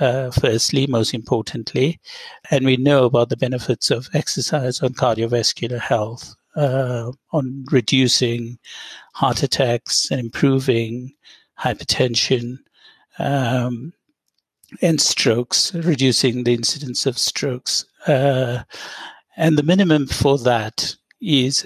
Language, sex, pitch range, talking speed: English, male, 125-145 Hz, 105 wpm